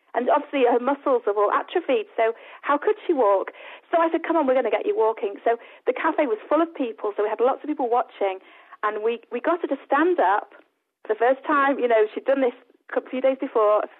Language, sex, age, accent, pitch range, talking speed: English, female, 40-59, British, 220-310 Hz, 245 wpm